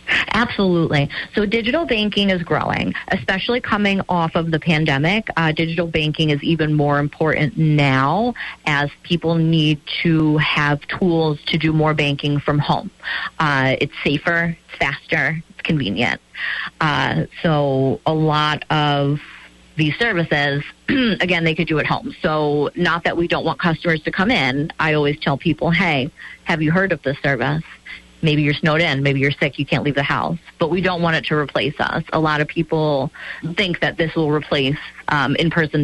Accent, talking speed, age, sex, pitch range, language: American, 170 wpm, 40-59, female, 145-170 Hz, English